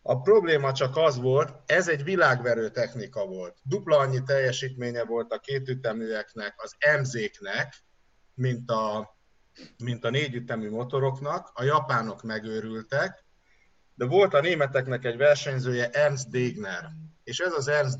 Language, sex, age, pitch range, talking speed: Hungarian, male, 50-69, 120-140 Hz, 130 wpm